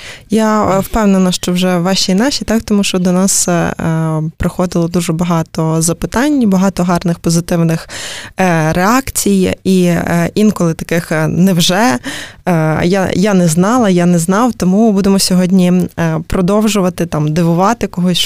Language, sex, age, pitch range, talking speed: Ukrainian, female, 20-39, 165-195 Hz, 120 wpm